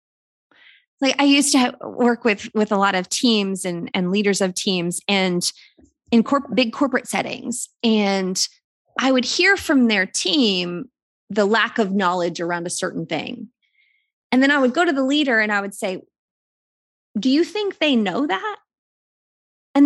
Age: 20-39